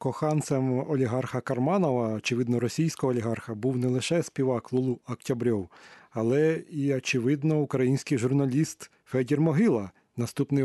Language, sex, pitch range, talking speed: Ukrainian, male, 125-145 Hz, 115 wpm